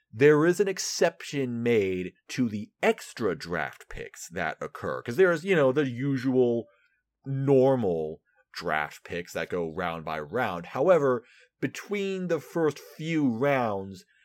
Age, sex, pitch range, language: 30-49, male, 100-150 Hz, English